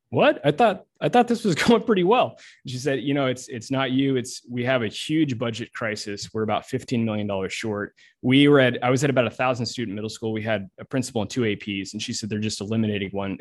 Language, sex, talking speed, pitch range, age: English, male, 255 wpm, 105-130 Hz, 20-39